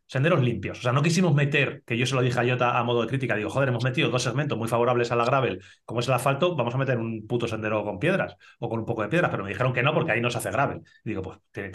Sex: male